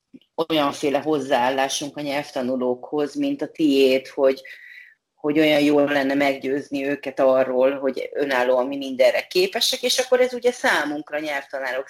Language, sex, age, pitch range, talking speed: Hungarian, female, 30-49, 130-185 Hz, 130 wpm